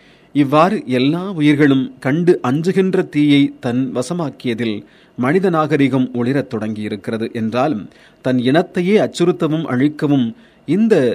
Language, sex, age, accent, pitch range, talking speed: Tamil, male, 40-59, native, 120-155 Hz, 95 wpm